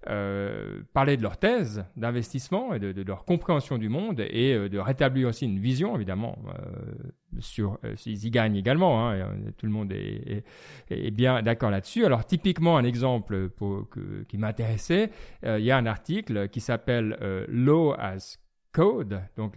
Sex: male